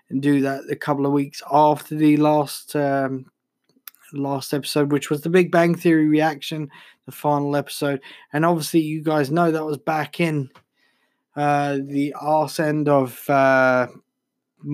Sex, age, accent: male, 20-39, British